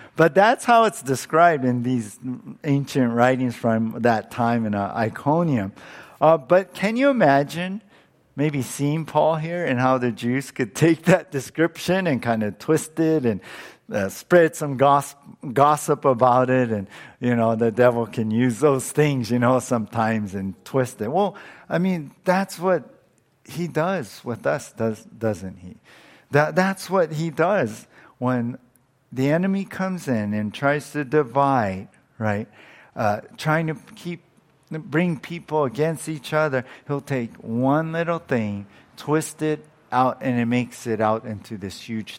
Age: 50-69